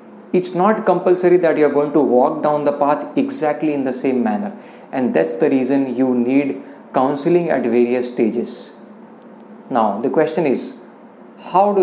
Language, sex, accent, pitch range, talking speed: English, male, Indian, 135-180 Hz, 160 wpm